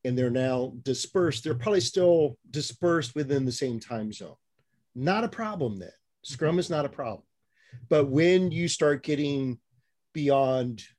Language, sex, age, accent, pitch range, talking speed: English, male, 40-59, American, 120-150 Hz, 155 wpm